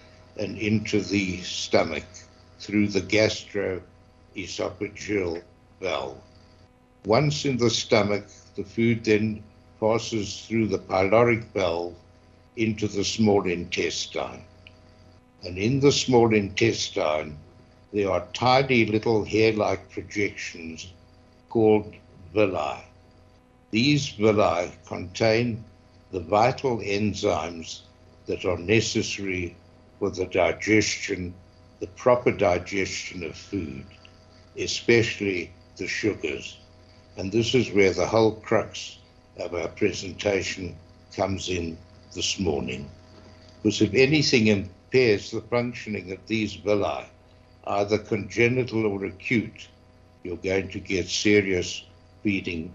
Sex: male